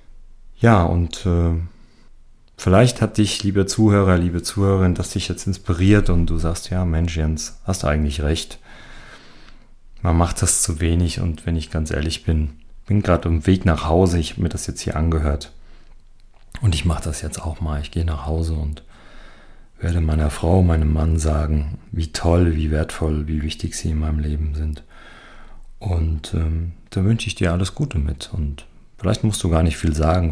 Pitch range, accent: 75-90 Hz, German